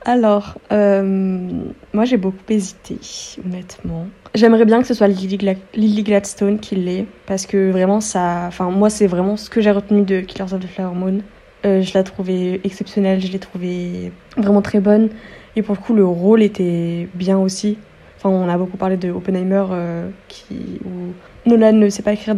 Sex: female